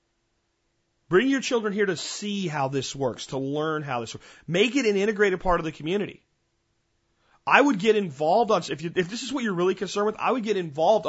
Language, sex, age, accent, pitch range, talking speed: English, male, 30-49, American, 135-195 Hz, 220 wpm